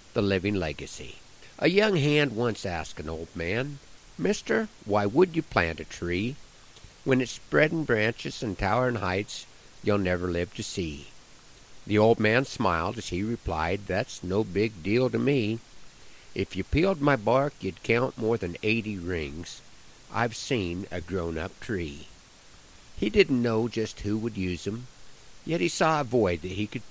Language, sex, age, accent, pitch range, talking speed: English, male, 50-69, American, 95-130 Hz, 165 wpm